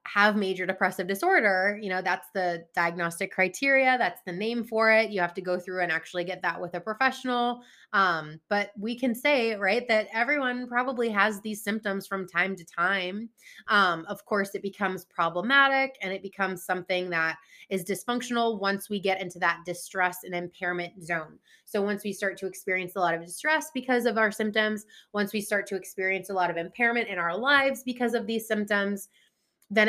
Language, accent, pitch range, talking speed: English, American, 180-235 Hz, 195 wpm